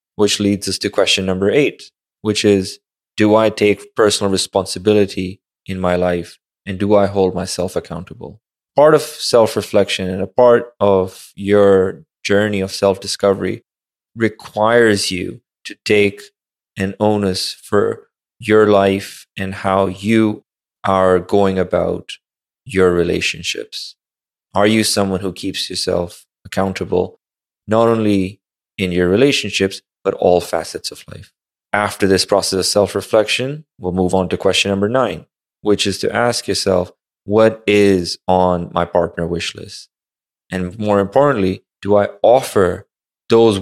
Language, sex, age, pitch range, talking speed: English, male, 20-39, 95-110 Hz, 140 wpm